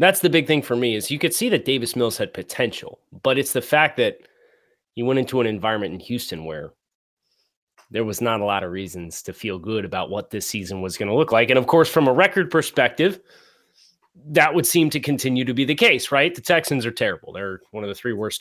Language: English